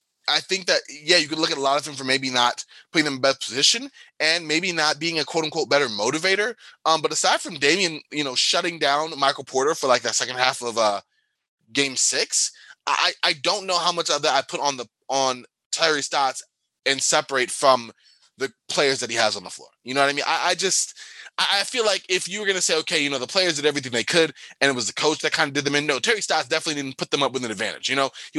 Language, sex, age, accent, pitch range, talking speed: English, male, 20-39, American, 130-160 Hz, 270 wpm